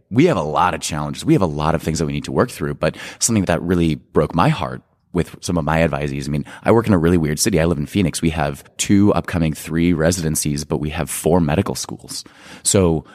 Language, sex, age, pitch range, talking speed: English, male, 20-39, 75-90 Hz, 255 wpm